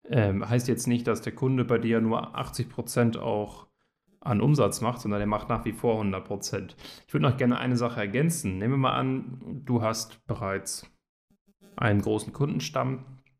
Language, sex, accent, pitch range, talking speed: German, male, German, 110-130 Hz, 175 wpm